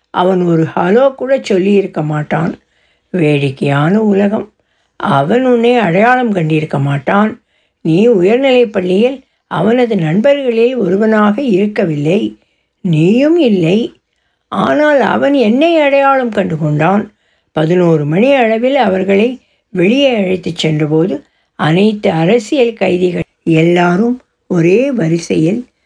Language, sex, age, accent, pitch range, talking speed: Tamil, female, 60-79, native, 175-245 Hz, 85 wpm